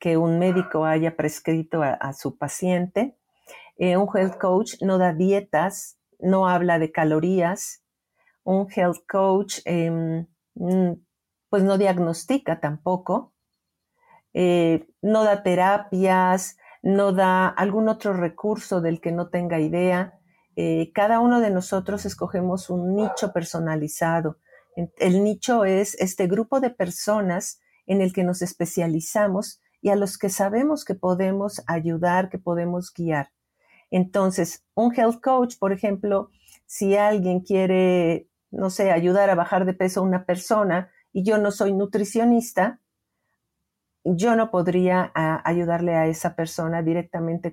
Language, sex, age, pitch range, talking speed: Spanish, female, 50-69, 170-200 Hz, 135 wpm